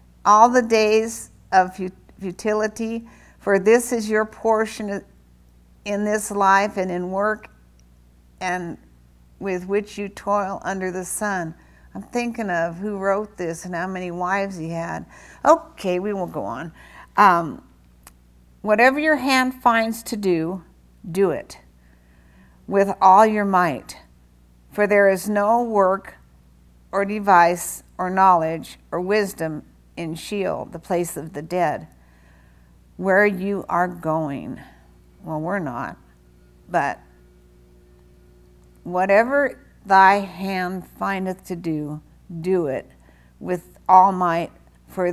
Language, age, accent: English, 60-79, American